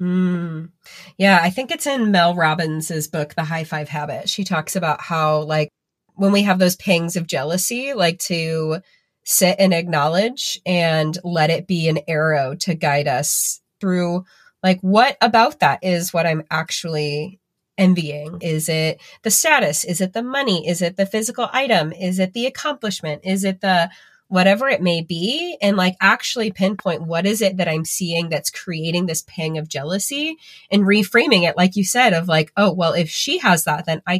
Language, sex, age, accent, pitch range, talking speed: English, female, 30-49, American, 160-195 Hz, 185 wpm